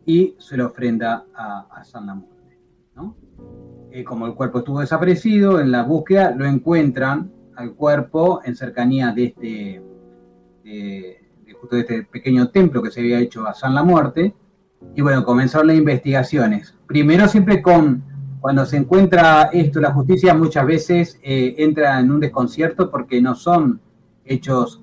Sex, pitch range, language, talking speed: male, 125-165 Hz, Spanish, 160 wpm